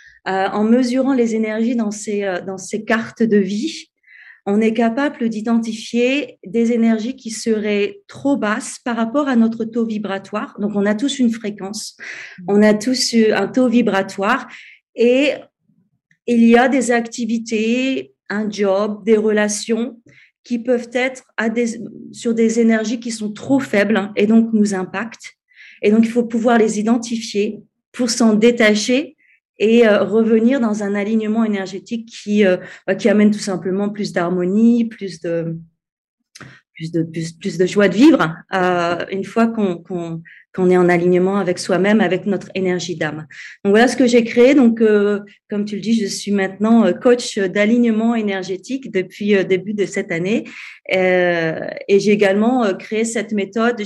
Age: 40-59